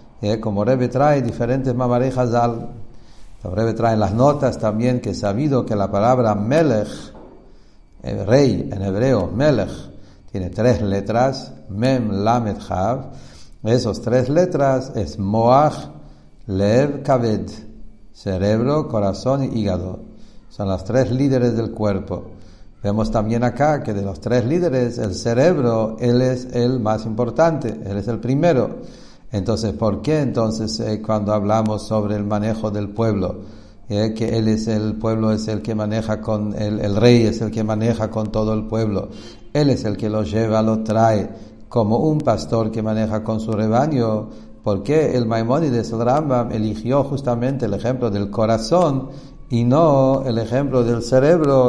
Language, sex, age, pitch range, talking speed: English, male, 60-79, 105-125 Hz, 155 wpm